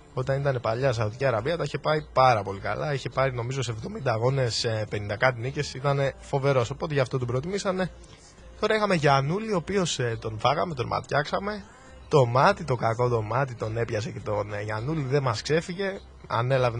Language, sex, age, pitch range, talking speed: Greek, male, 20-39, 115-170 Hz, 190 wpm